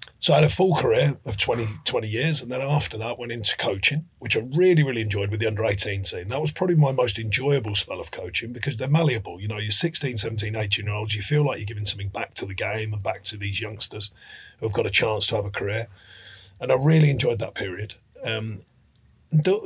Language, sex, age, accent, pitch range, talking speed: English, male, 40-59, British, 105-145 Hz, 225 wpm